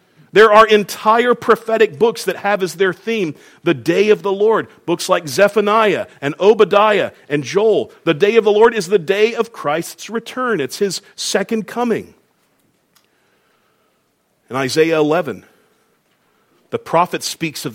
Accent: American